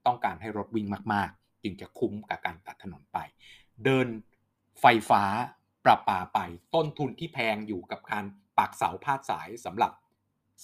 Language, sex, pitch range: Thai, male, 105-130 Hz